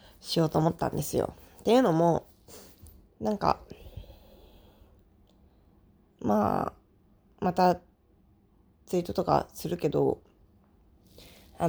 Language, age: Japanese, 20-39